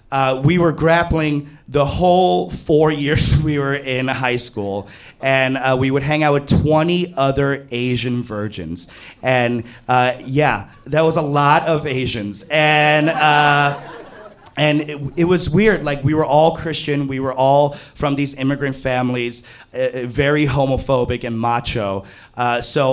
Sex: male